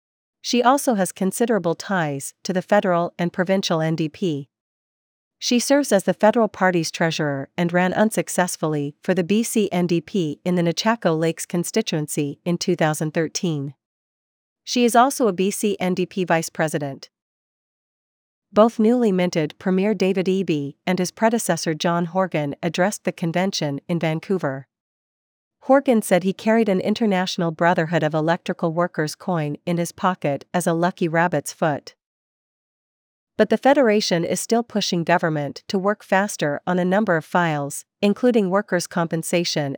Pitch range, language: 160-200 Hz, English